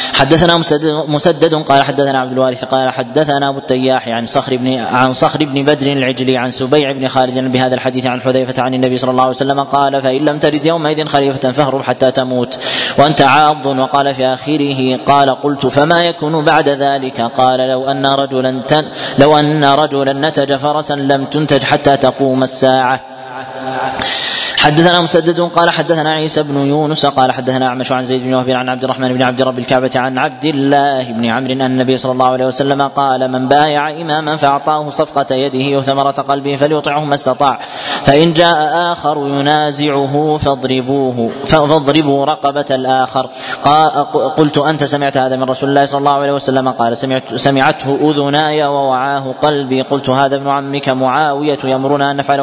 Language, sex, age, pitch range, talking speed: Arabic, male, 20-39, 130-150 Hz, 165 wpm